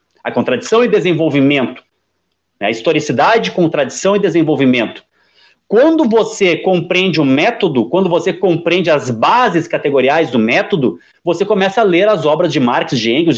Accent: Brazilian